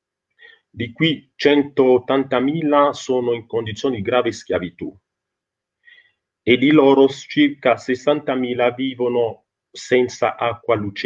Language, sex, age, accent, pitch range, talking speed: Italian, male, 40-59, native, 115-155 Hz, 100 wpm